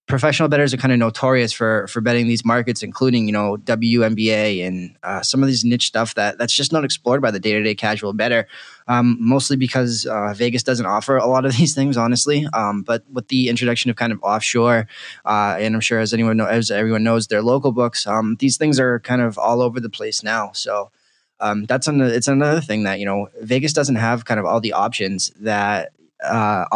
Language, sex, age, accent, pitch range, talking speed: English, male, 20-39, American, 110-130 Hz, 225 wpm